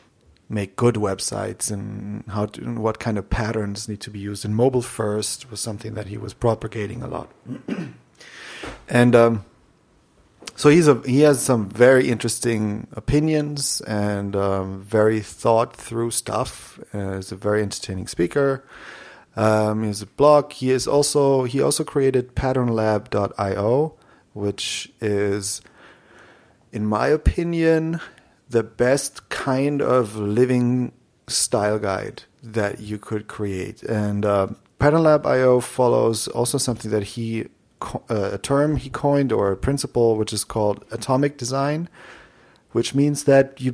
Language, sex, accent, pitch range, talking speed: English, male, German, 105-130 Hz, 140 wpm